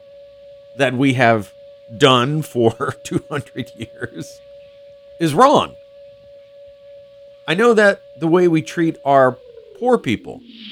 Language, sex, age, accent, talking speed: English, male, 50-69, American, 105 wpm